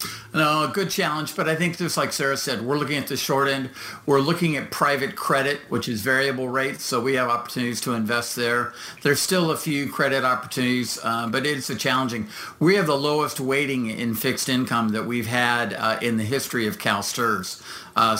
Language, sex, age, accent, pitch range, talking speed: English, male, 50-69, American, 130-155 Hz, 205 wpm